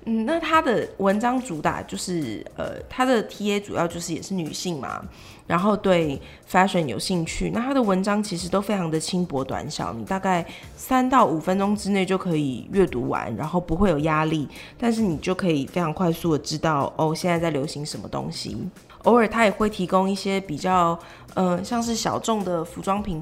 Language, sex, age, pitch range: Chinese, female, 20-39, 160-195 Hz